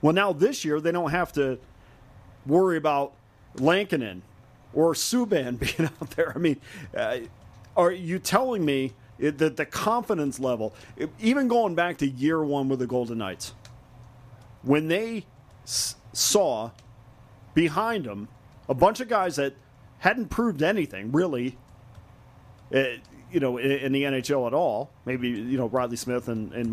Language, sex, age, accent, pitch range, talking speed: English, male, 40-59, American, 120-180 Hz, 150 wpm